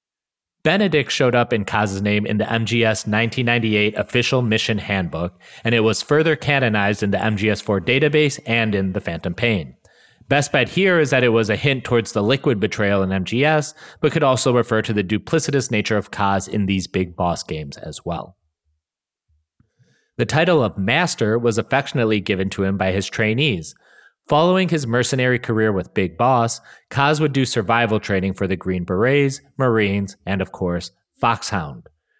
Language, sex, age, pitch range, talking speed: English, male, 30-49, 105-135 Hz, 170 wpm